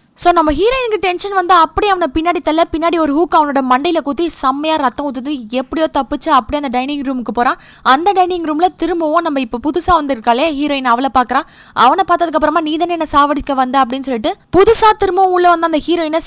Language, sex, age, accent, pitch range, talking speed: Tamil, female, 20-39, native, 275-340 Hz, 190 wpm